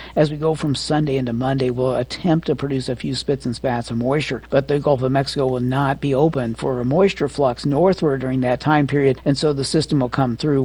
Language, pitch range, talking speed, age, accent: English, 125-155 Hz, 240 wpm, 60-79, American